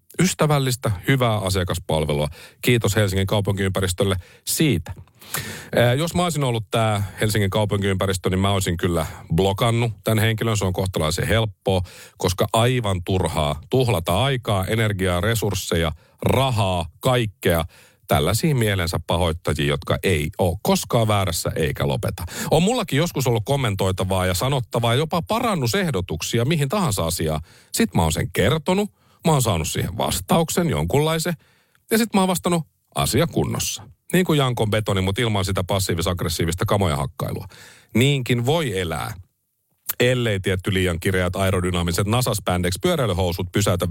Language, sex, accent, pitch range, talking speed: Finnish, male, native, 95-125 Hz, 130 wpm